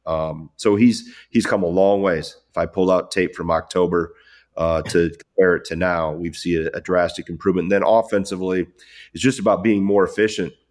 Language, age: English, 30-49